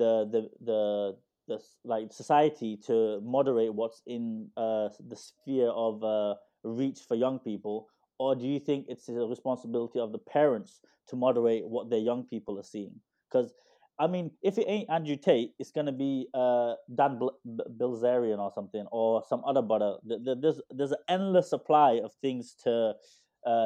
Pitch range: 115-150 Hz